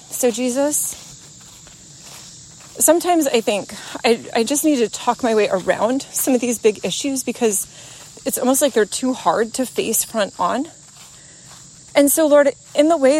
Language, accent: English, American